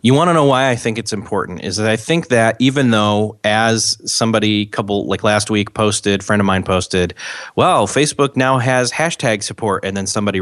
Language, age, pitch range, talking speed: English, 30-49, 105-130 Hz, 205 wpm